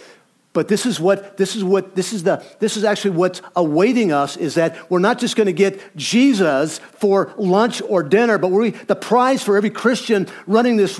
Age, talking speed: 50-69, 205 wpm